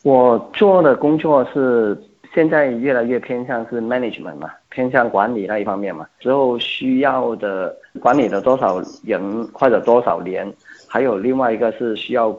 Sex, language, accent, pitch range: male, Chinese, native, 105-125 Hz